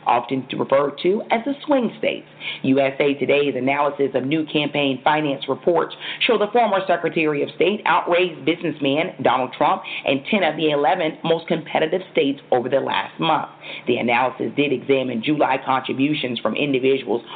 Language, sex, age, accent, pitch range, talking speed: English, female, 40-59, American, 130-170 Hz, 160 wpm